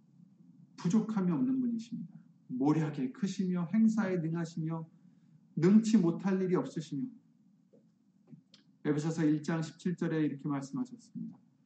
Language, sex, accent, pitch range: Korean, male, native, 170-230 Hz